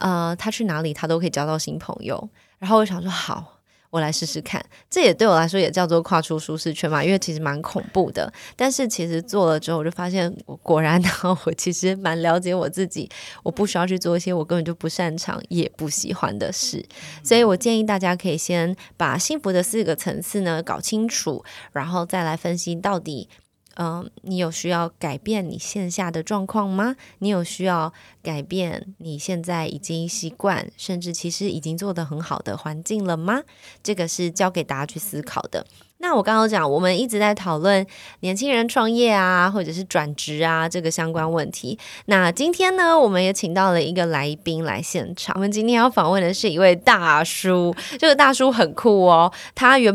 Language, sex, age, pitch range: Chinese, female, 20-39, 165-200 Hz